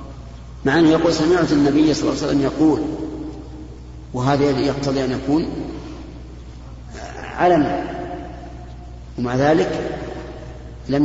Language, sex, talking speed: Arabic, male, 100 wpm